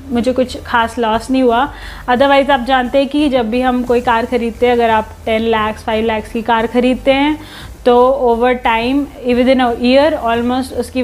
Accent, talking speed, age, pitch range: native, 200 wpm, 30-49, 230-265 Hz